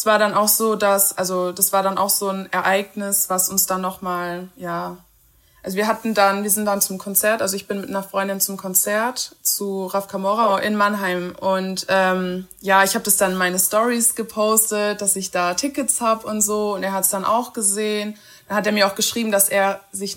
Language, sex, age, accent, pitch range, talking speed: German, female, 20-39, German, 195-220 Hz, 225 wpm